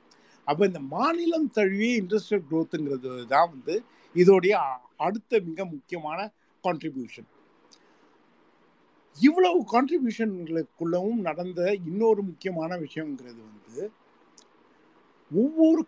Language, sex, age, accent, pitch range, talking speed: Tamil, male, 50-69, native, 145-210 Hz, 40 wpm